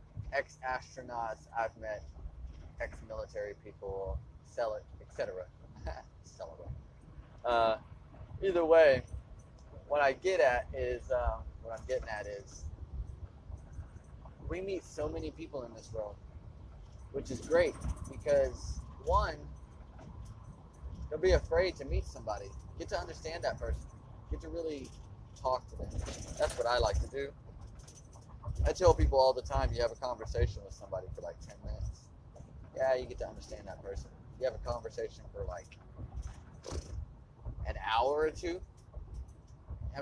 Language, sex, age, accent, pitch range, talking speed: English, male, 20-39, American, 85-130 Hz, 135 wpm